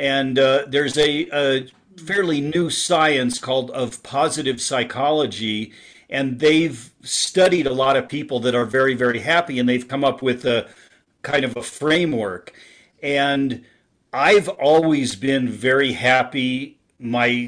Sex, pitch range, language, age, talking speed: male, 125-160 Hz, English, 40-59, 140 wpm